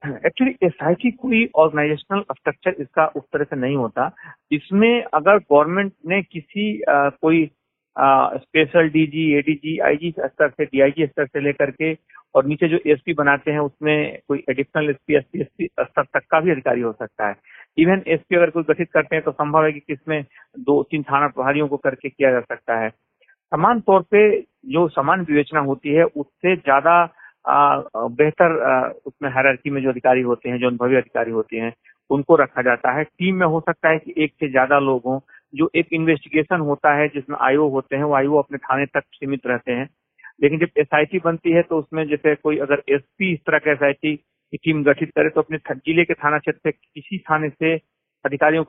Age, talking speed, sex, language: 50-69, 195 wpm, male, Hindi